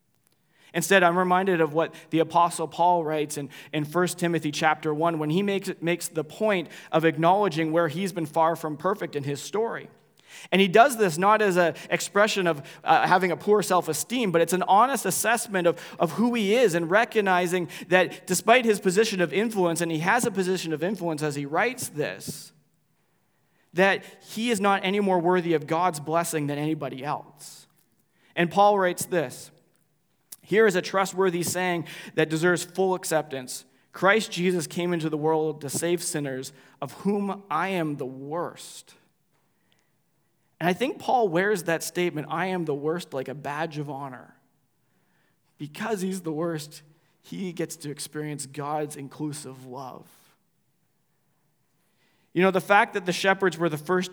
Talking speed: 170 wpm